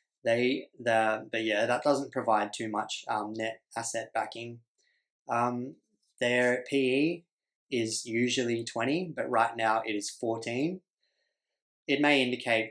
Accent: Australian